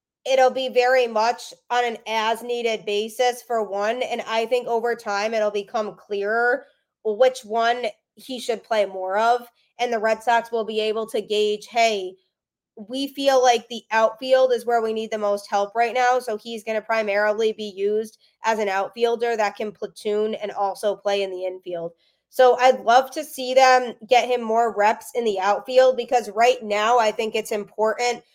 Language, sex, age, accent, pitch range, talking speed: English, female, 20-39, American, 215-245 Hz, 185 wpm